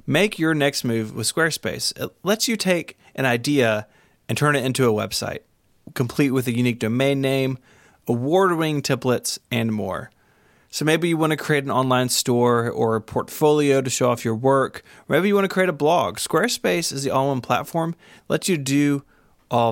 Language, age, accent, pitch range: English, 30-49, American, 120-155 Hz